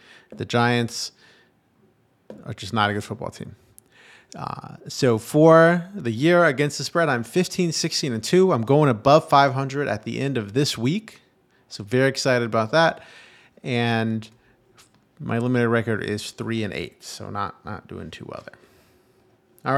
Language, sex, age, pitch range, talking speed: English, male, 30-49, 115-145 Hz, 160 wpm